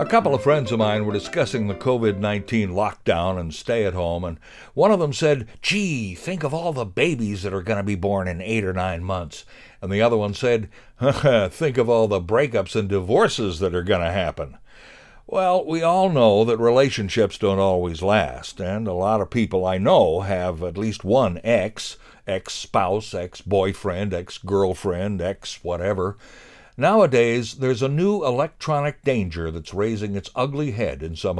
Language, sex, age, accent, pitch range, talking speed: English, male, 60-79, American, 95-150 Hz, 175 wpm